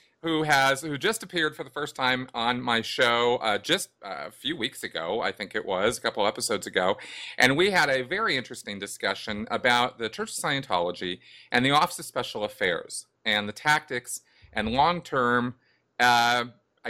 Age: 40-59